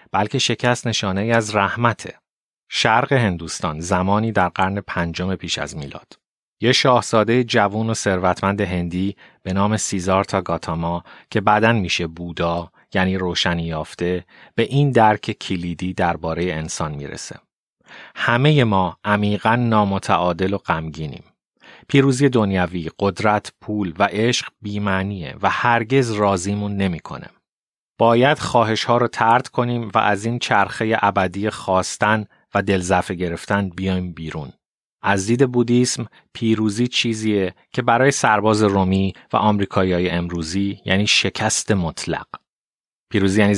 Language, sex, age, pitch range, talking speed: Persian, male, 30-49, 90-115 Hz, 125 wpm